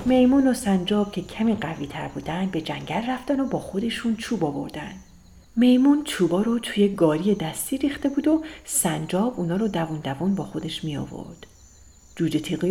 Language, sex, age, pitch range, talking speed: Persian, female, 40-59, 155-230 Hz, 160 wpm